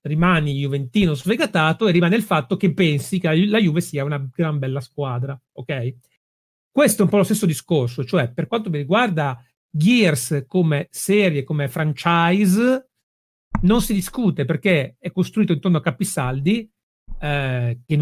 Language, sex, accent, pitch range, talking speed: Italian, male, native, 145-195 Hz, 150 wpm